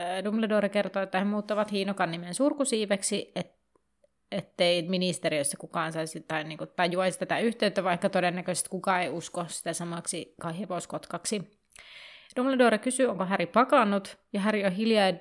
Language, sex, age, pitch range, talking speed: Finnish, female, 30-49, 180-225 Hz, 140 wpm